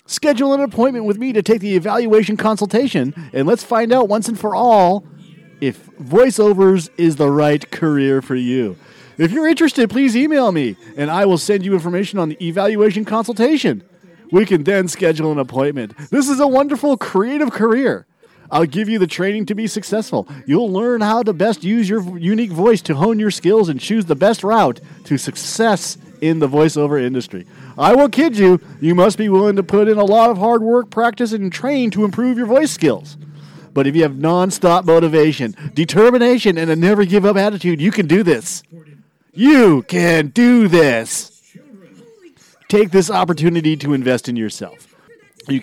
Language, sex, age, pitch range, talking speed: English, male, 40-59, 155-225 Hz, 180 wpm